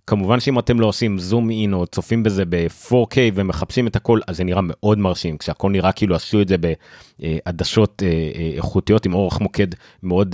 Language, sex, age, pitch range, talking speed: Hebrew, male, 30-49, 90-115 Hz, 205 wpm